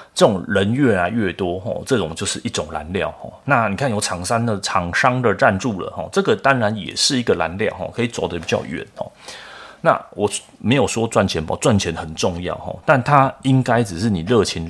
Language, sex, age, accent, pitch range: Chinese, male, 30-49, native, 90-115 Hz